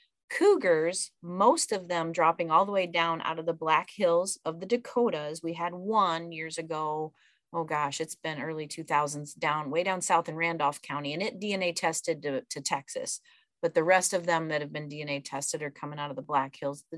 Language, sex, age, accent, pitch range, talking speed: English, female, 30-49, American, 155-200 Hz, 210 wpm